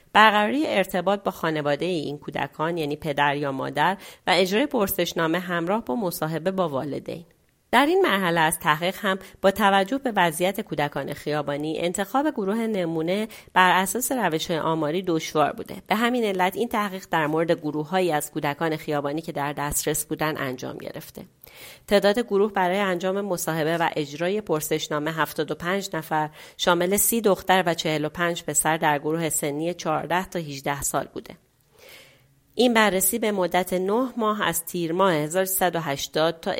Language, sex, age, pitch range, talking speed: Persian, female, 40-59, 155-195 Hz, 150 wpm